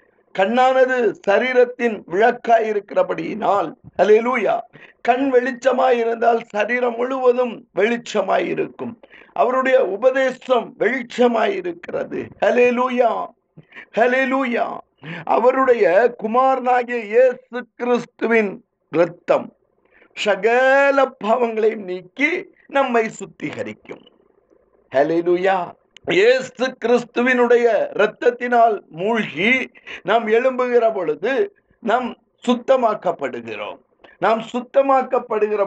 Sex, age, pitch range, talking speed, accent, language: male, 50-69, 220-265 Hz, 55 wpm, native, Tamil